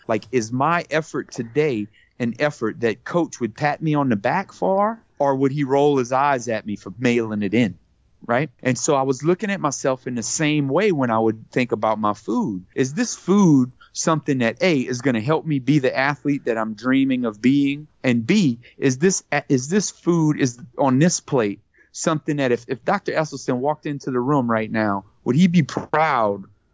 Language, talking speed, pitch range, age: English, 210 wpm, 115-155 Hz, 30-49